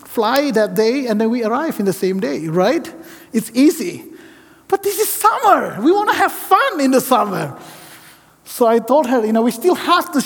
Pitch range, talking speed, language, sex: 215-305 Hz, 210 wpm, English, male